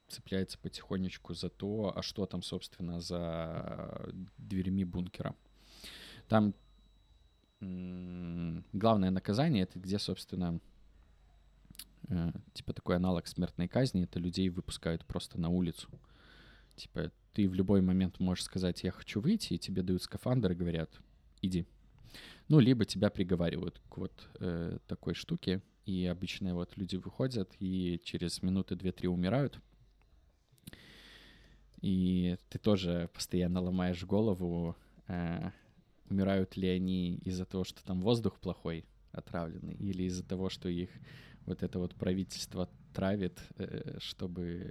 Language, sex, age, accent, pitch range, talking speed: Russian, male, 20-39, native, 90-95 Hz, 125 wpm